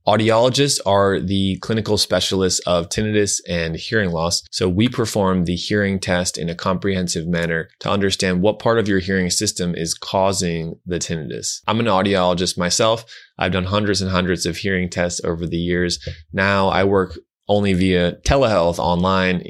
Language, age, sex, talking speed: English, 20-39, male, 165 wpm